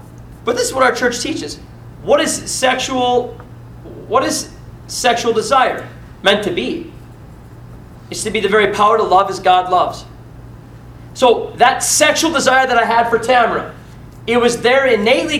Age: 30-49